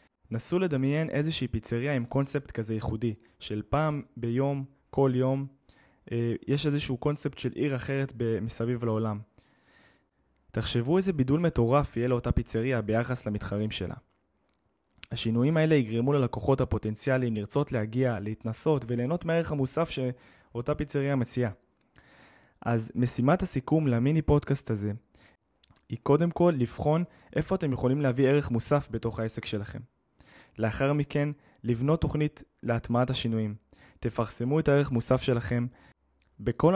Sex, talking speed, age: male, 125 wpm, 20-39